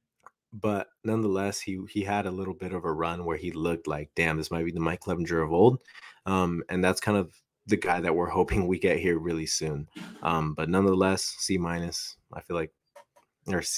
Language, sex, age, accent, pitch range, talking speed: English, male, 20-39, American, 85-100 Hz, 210 wpm